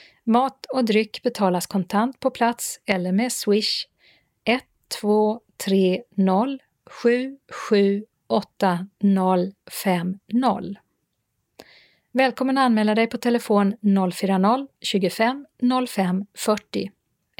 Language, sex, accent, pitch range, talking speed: Swedish, female, native, 190-240 Hz, 60 wpm